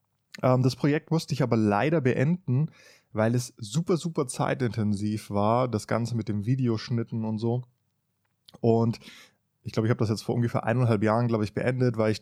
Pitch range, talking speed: 105-125 Hz, 175 wpm